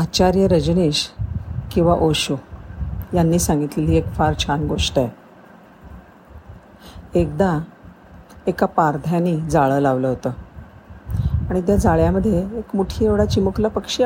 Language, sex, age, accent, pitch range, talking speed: Marathi, female, 50-69, native, 145-190 Hz, 105 wpm